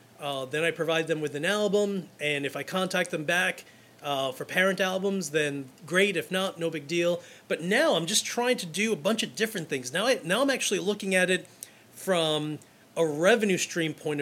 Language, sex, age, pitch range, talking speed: English, male, 30-49, 150-200 Hz, 205 wpm